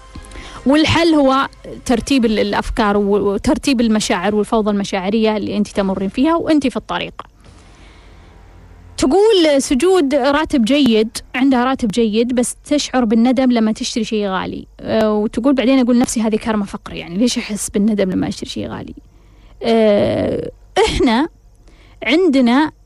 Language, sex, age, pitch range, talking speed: Arabic, female, 20-39, 215-285 Hz, 125 wpm